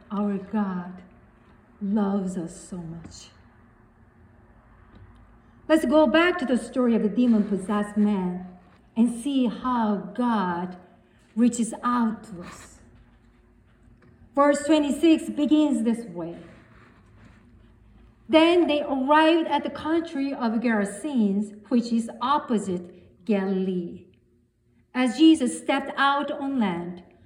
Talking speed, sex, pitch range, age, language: 105 wpm, female, 180-275 Hz, 40-59, English